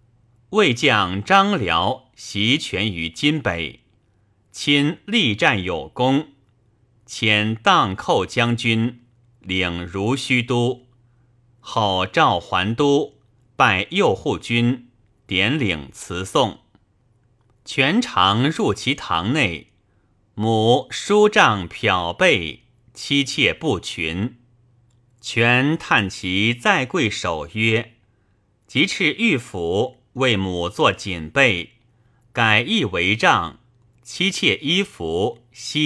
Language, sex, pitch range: Chinese, male, 105-125 Hz